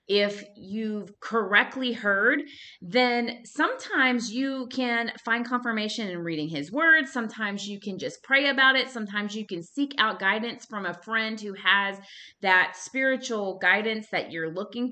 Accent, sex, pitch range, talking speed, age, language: American, female, 190-255 Hz, 155 wpm, 30-49, English